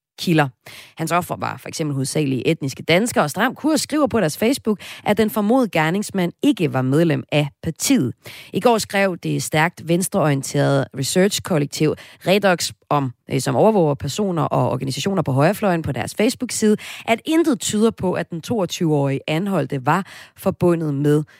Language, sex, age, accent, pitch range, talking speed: Danish, female, 30-49, native, 145-215 Hz, 150 wpm